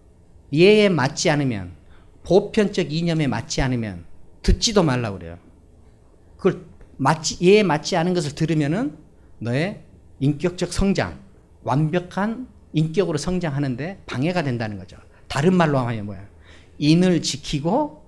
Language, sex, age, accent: Korean, male, 40-59, native